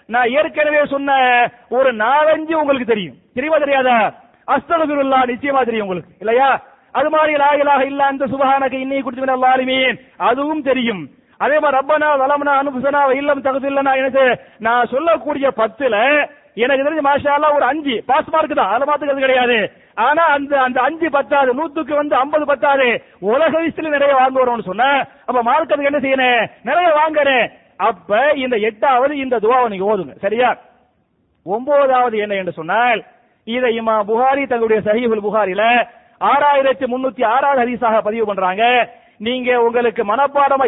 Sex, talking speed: male, 95 wpm